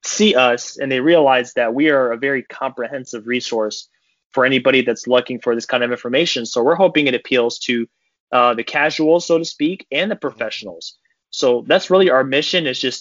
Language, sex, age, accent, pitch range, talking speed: English, male, 20-39, American, 125-150 Hz, 200 wpm